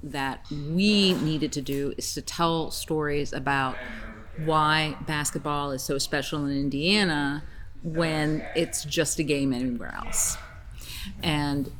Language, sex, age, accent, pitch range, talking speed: English, female, 40-59, American, 140-170 Hz, 125 wpm